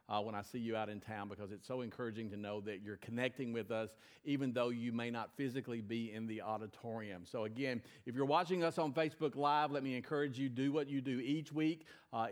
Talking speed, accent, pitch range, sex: 240 wpm, American, 115-140 Hz, male